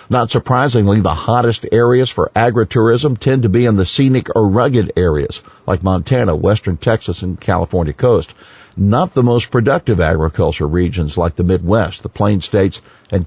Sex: male